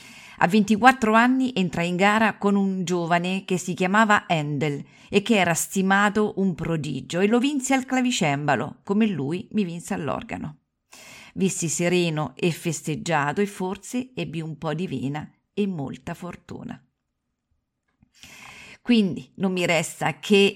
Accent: native